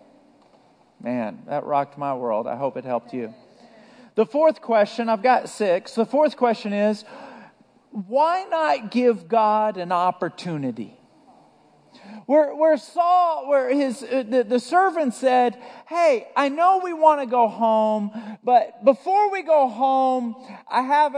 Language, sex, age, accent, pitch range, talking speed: English, male, 40-59, American, 175-260 Hz, 145 wpm